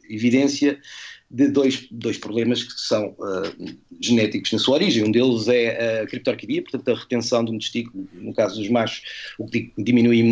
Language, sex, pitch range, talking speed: Portuguese, male, 115-140 Hz, 170 wpm